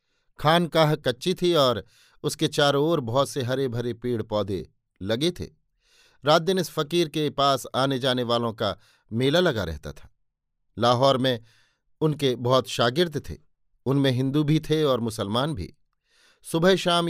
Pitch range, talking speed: 120-155 Hz, 160 wpm